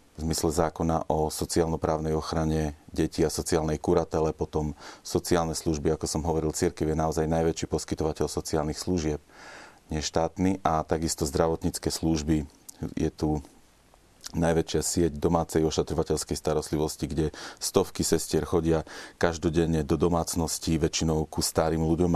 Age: 40-59